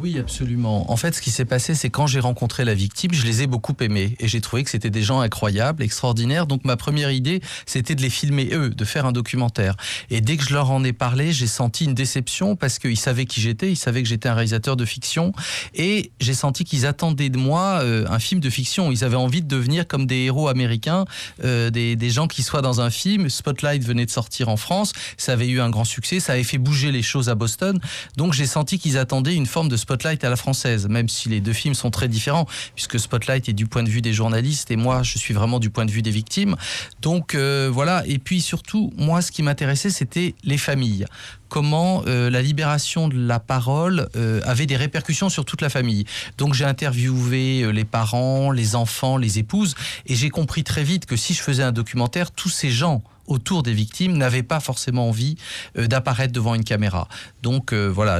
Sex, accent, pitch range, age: male, French, 115-145 Hz, 30-49